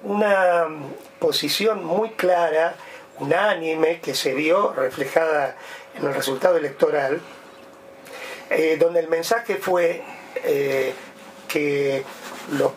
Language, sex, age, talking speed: Spanish, male, 40-59, 100 wpm